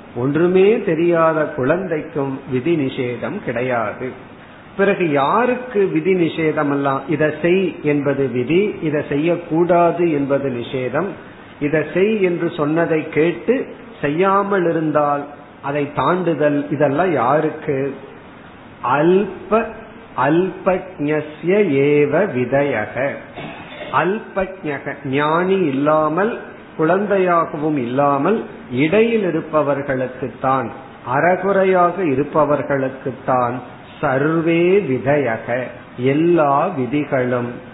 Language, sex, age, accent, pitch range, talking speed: Tamil, male, 50-69, native, 135-175 Hz, 50 wpm